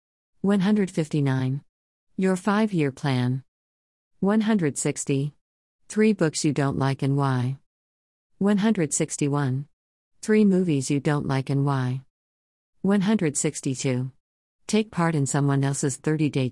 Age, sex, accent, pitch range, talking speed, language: 40-59, female, American, 125-165 Hz, 100 wpm, English